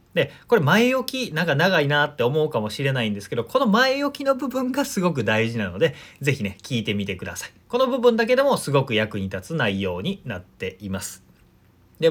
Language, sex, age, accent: Japanese, male, 30-49, native